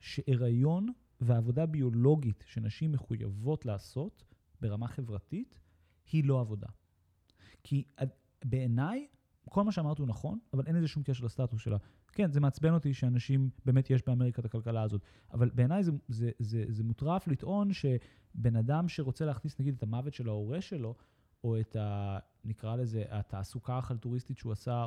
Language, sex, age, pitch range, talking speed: Hebrew, male, 30-49, 120-155 Hz, 155 wpm